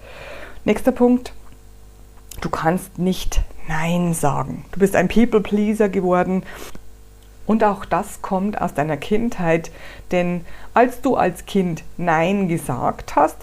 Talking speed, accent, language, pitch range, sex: 125 wpm, German, German, 155-210 Hz, female